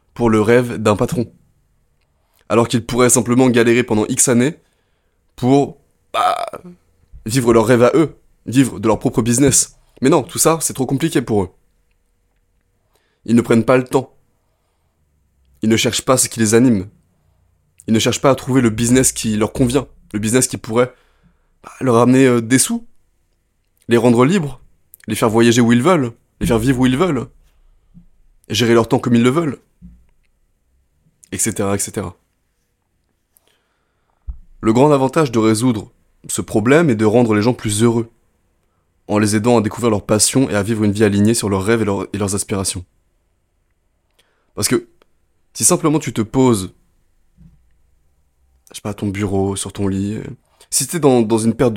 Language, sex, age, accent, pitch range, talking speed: French, male, 20-39, French, 95-125 Hz, 175 wpm